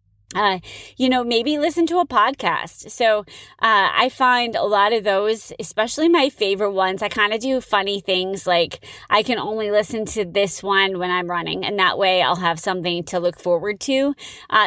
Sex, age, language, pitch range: female, 20-39, English, 185-255 Hz